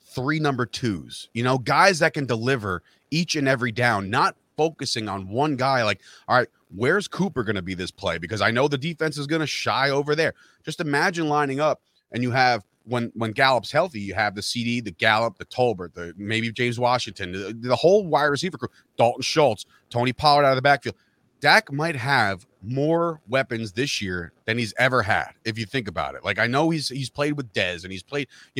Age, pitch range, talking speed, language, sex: 30-49, 110-140 Hz, 220 wpm, English, male